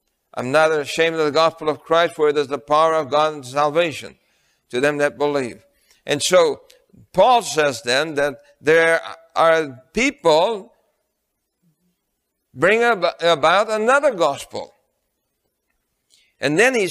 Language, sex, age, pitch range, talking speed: English, male, 60-79, 145-175 Hz, 130 wpm